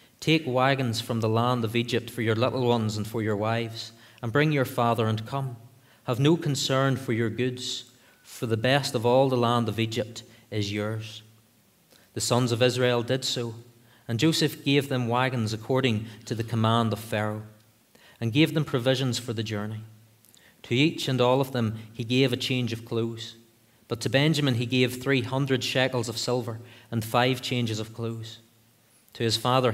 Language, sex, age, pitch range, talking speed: English, male, 30-49, 115-130 Hz, 185 wpm